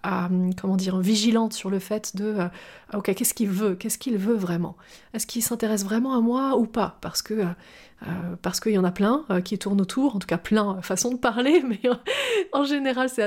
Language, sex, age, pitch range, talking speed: French, female, 30-49, 195-245 Hz, 215 wpm